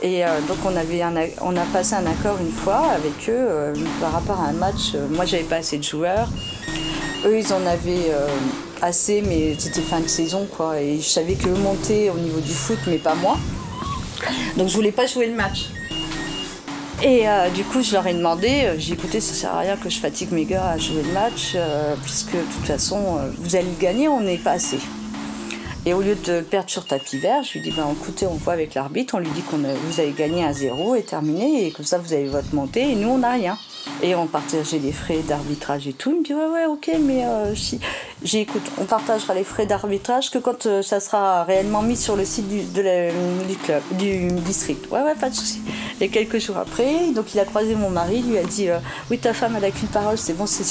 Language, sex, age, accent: French, female, 40-59, French